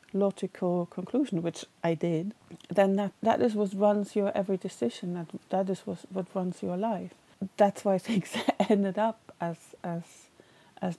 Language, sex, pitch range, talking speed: English, female, 170-200 Hz, 165 wpm